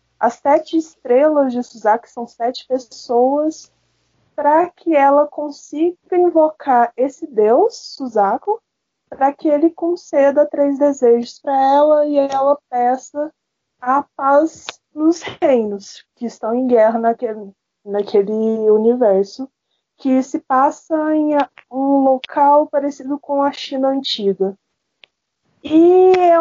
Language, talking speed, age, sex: Portuguese, 115 wpm, 20-39, female